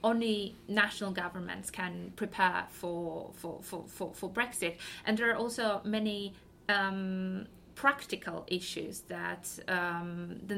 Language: English